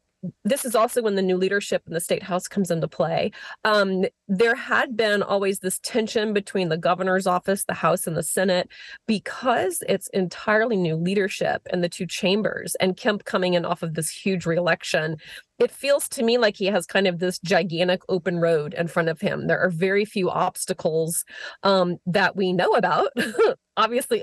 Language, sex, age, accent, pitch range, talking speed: English, female, 30-49, American, 180-210 Hz, 190 wpm